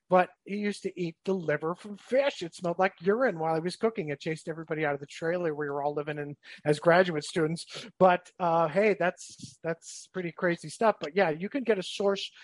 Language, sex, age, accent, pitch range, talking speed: English, male, 50-69, American, 160-195 Hz, 230 wpm